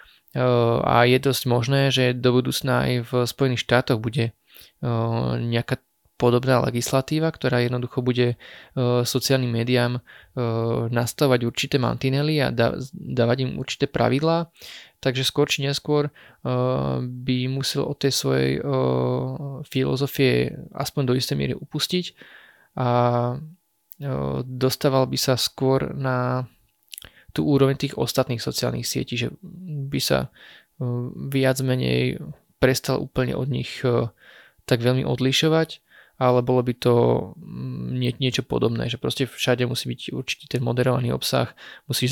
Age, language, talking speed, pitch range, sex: 20-39, Slovak, 120 wpm, 120-135 Hz, male